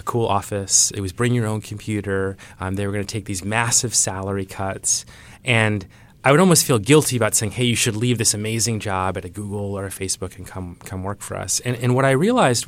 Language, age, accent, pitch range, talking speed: English, 30-49, American, 100-120 Hz, 235 wpm